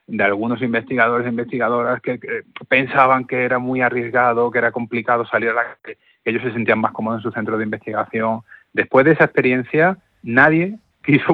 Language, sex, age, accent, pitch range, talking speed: Spanish, male, 30-49, Spanish, 105-125 Hz, 185 wpm